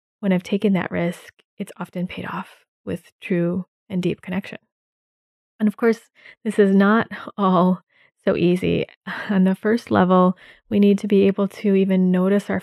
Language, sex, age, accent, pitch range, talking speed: English, female, 20-39, American, 185-210 Hz, 170 wpm